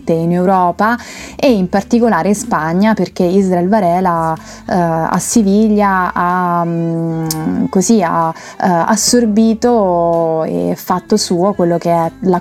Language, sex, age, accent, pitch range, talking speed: Italian, female, 20-39, native, 170-200 Hz, 120 wpm